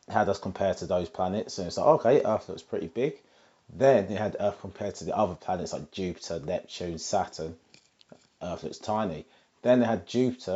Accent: British